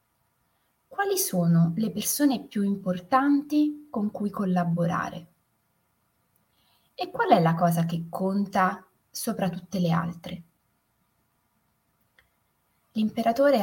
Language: Italian